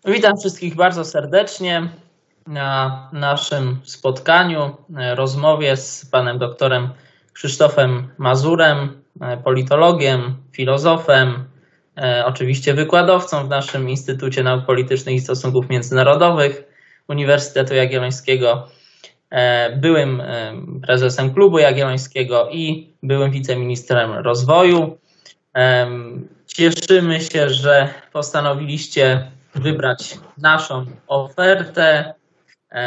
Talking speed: 75 wpm